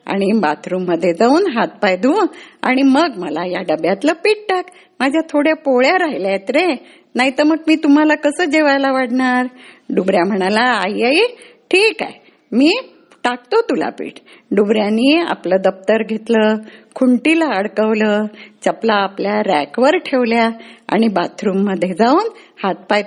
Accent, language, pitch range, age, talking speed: native, Marathi, 210-315 Hz, 50-69, 130 wpm